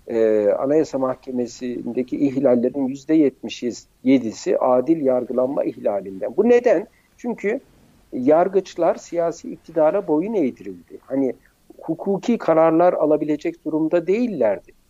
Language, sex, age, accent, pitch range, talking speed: Turkish, male, 60-79, native, 155-225 Hz, 90 wpm